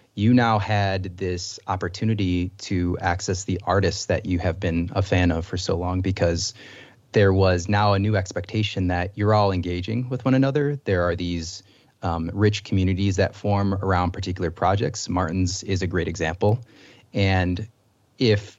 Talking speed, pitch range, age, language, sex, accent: 165 wpm, 95-110 Hz, 30-49, English, male, American